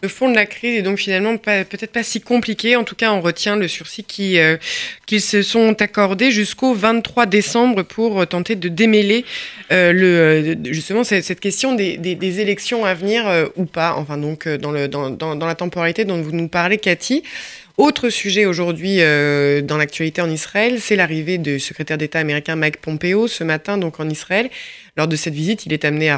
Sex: female